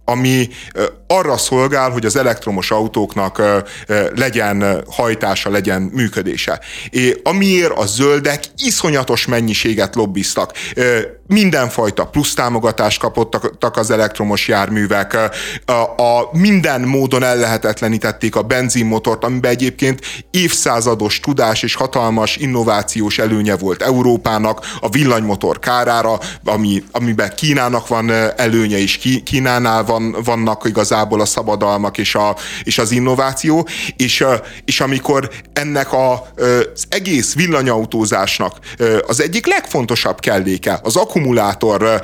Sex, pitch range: male, 110-130 Hz